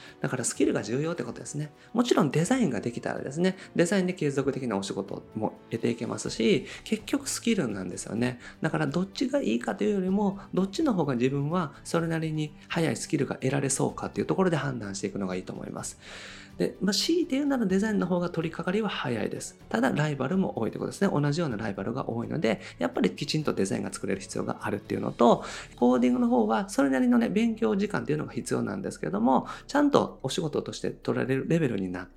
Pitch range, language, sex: 135-210 Hz, Japanese, male